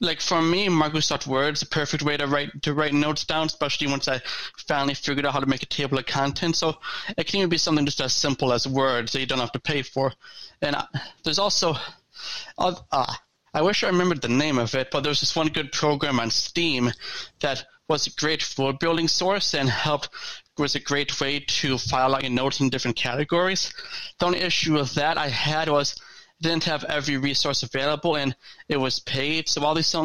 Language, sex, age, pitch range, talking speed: English, male, 20-39, 135-160 Hz, 210 wpm